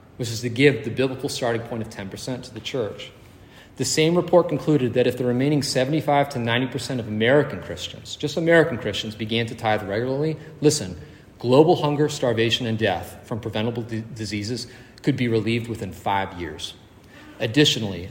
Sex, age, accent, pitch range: male, 40-59, American, 100-130 Hz